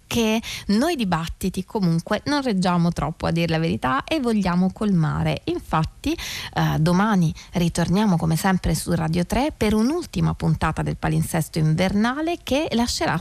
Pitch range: 170-220 Hz